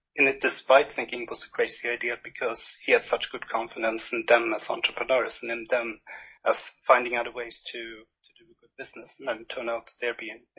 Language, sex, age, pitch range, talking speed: English, male, 30-49, 115-135 Hz, 220 wpm